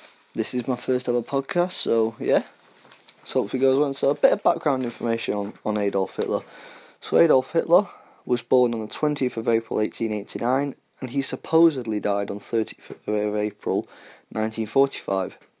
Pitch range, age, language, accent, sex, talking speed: 105-125 Hz, 20-39, English, British, male, 165 wpm